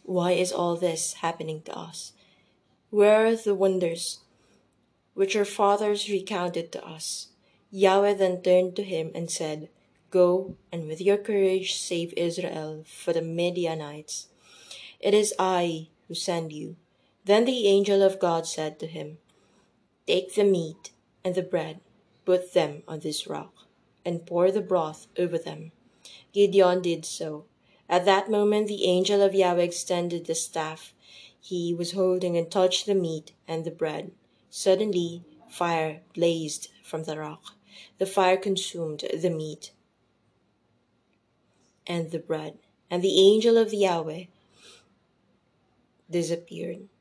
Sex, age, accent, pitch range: female, 20-39, Filipino, 160-190 Hz